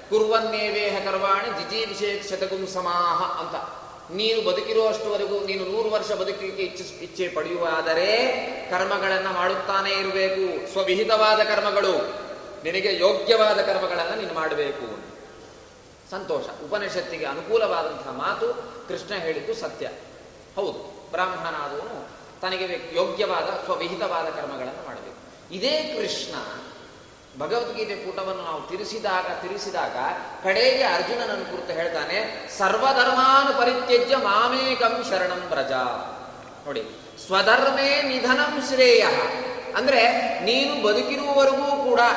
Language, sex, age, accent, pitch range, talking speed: Kannada, male, 30-49, native, 190-265 Hz, 90 wpm